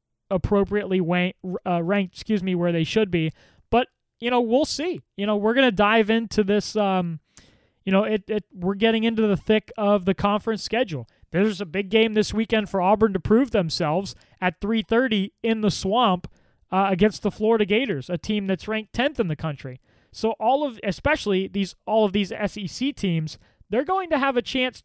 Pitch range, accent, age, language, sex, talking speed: 185-225 Hz, American, 20-39, English, male, 200 wpm